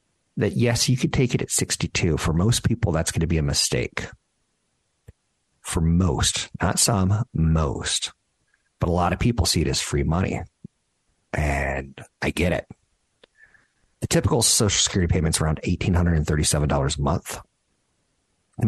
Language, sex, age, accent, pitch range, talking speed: English, male, 50-69, American, 80-95 Hz, 150 wpm